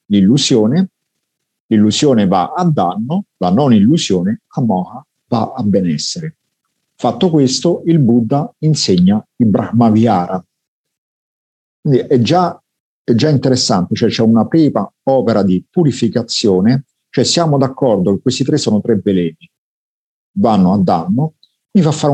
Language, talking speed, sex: Italian, 125 wpm, male